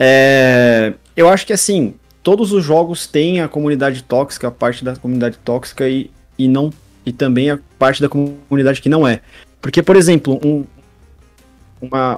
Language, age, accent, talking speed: Portuguese, 20-39, Brazilian, 170 wpm